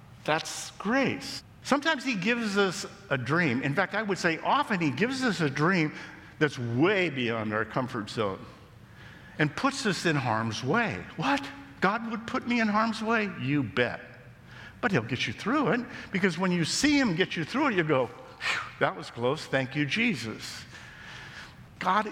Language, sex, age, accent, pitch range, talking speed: English, male, 50-69, American, 125-210 Hz, 175 wpm